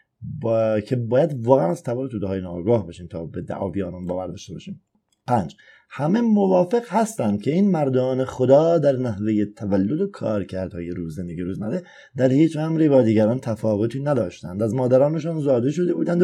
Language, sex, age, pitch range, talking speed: Persian, male, 30-49, 105-150 Hz, 175 wpm